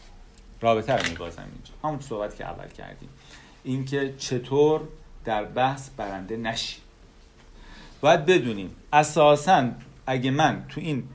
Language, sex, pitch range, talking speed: Persian, male, 110-145 Hz, 120 wpm